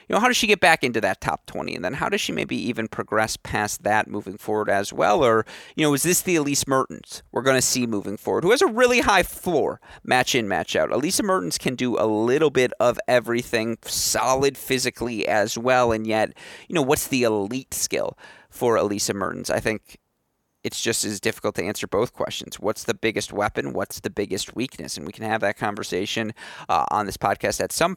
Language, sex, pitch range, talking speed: English, male, 100-125 Hz, 220 wpm